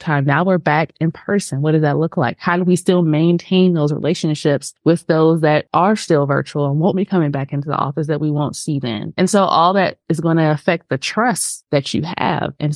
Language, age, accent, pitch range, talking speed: English, 20-39, American, 150-180 Hz, 240 wpm